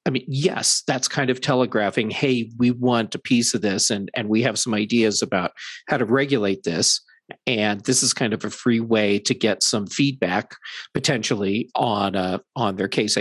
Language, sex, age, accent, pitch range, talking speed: English, male, 40-59, American, 110-135 Hz, 195 wpm